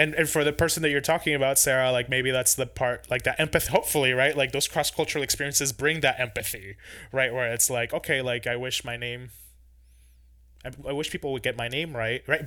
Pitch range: 120-150 Hz